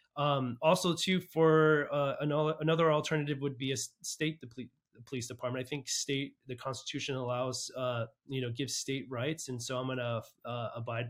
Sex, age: male, 30-49